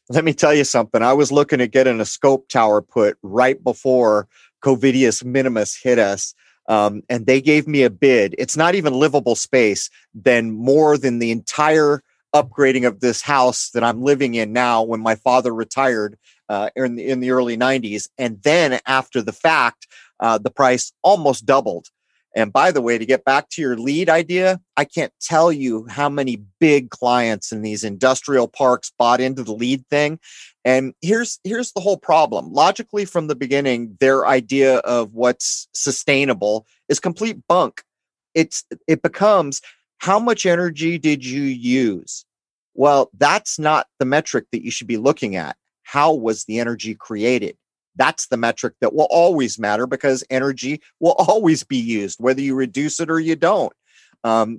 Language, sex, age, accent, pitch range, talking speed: English, male, 30-49, American, 120-150 Hz, 175 wpm